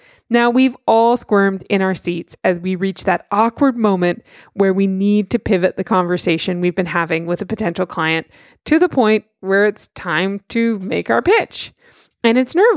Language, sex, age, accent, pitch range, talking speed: English, female, 20-39, American, 185-250 Hz, 190 wpm